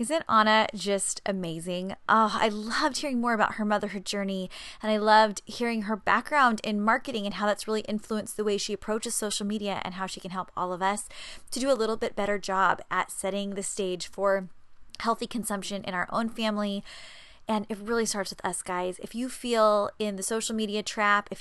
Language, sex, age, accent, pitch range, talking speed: English, female, 20-39, American, 190-230 Hz, 205 wpm